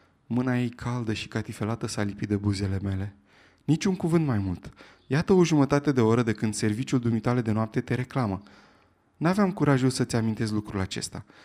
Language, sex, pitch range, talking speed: Romanian, male, 110-145 Hz, 175 wpm